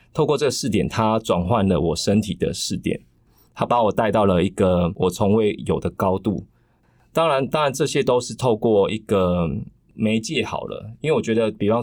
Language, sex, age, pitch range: Chinese, male, 20-39, 95-115 Hz